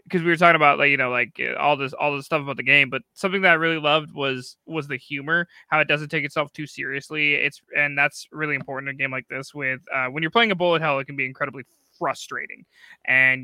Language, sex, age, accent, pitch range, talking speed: English, male, 20-39, American, 140-170 Hz, 260 wpm